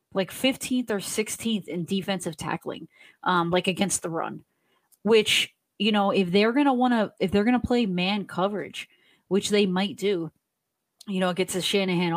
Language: English